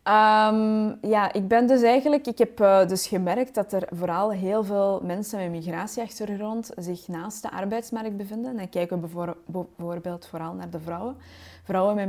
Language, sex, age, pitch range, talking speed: Dutch, female, 20-39, 180-215 Hz, 165 wpm